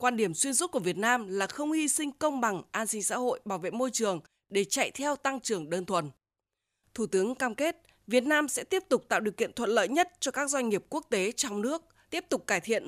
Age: 20-39